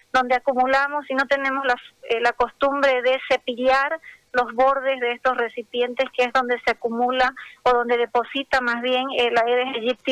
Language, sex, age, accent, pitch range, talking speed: Spanish, female, 30-49, American, 240-270 Hz, 170 wpm